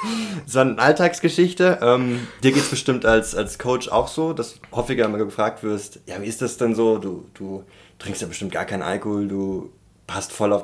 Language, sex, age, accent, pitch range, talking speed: German, male, 20-39, German, 100-130 Hz, 210 wpm